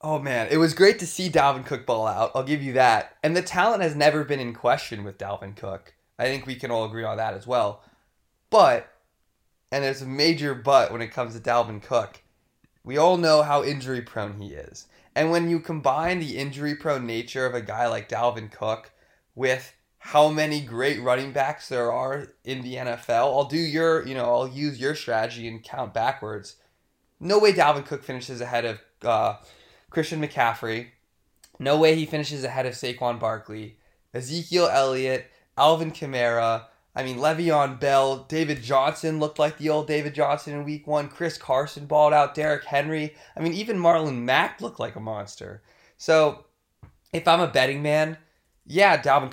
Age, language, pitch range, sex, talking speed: 20-39, English, 120-155 Hz, male, 185 wpm